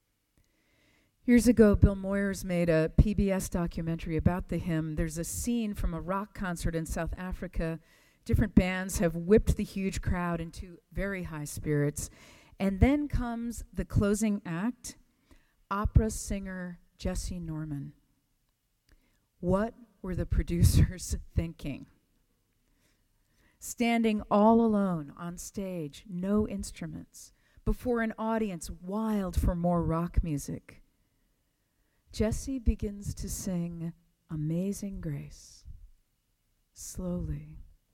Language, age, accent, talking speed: English, 40-59, American, 110 wpm